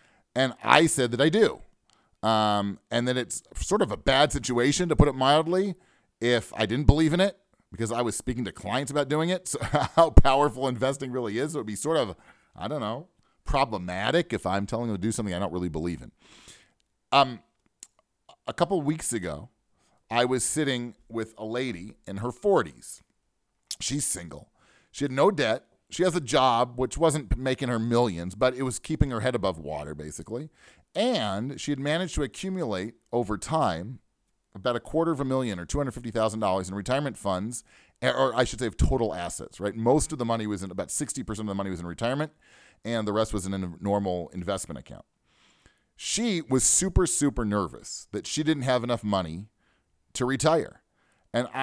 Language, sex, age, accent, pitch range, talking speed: English, male, 40-59, American, 105-140 Hz, 190 wpm